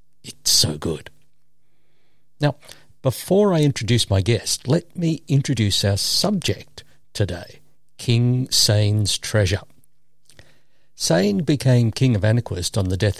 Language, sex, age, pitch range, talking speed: English, male, 60-79, 100-135 Hz, 120 wpm